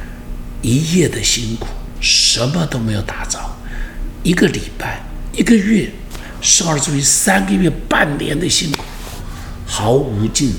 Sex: male